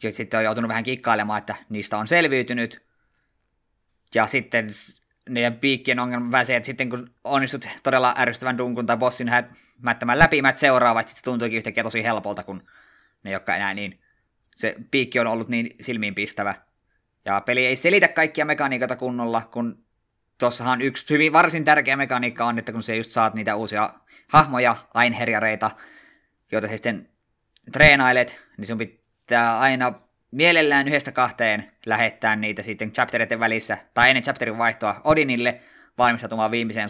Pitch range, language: 110-125 Hz, Finnish